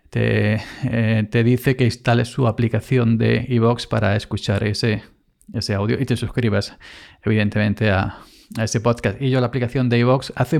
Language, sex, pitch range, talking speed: Spanish, male, 110-130 Hz, 165 wpm